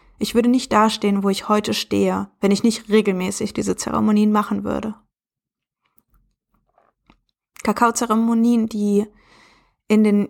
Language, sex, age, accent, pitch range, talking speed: German, female, 20-39, German, 200-230 Hz, 115 wpm